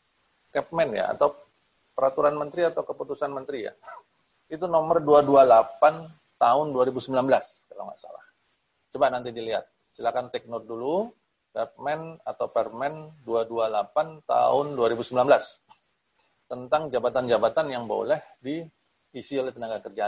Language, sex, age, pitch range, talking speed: Indonesian, male, 40-59, 125-165 Hz, 115 wpm